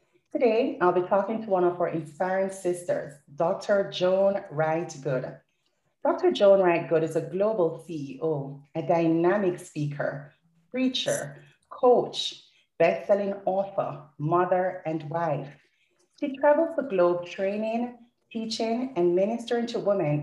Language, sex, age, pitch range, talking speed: English, female, 30-49, 160-225 Hz, 120 wpm